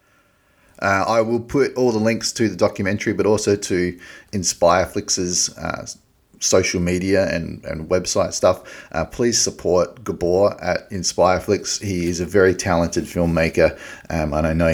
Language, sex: English, male